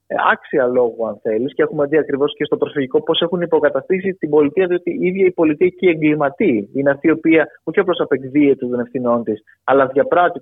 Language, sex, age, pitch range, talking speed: Greek, male, 30-49, 130-180 Hz, 205 wpm